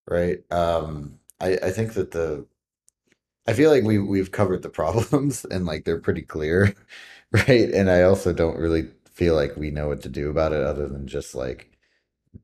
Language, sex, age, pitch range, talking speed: English, male, 30-49, 75-95 Hz, 190 wpm